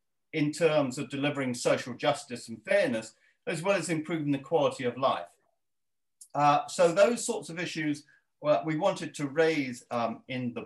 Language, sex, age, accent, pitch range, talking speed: English, male, 50-69, British, 145-210 Hz, 165 wpm